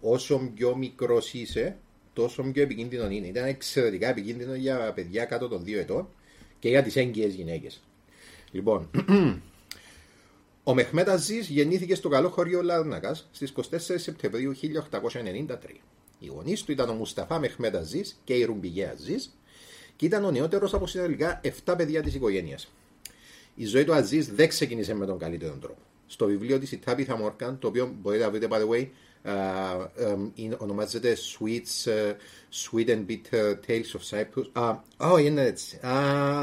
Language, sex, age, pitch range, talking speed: Greek, male, 30-49, 105-145 Hz, 160 wpm